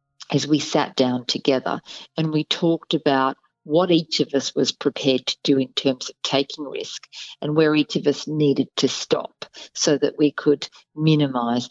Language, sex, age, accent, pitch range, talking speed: English, female, 50-69, Australian, 145-185 Hz, 180 wpm